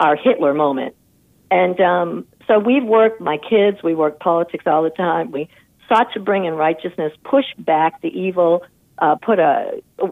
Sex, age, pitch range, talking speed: female, 50-69, 170-225 Hz, 180 wpm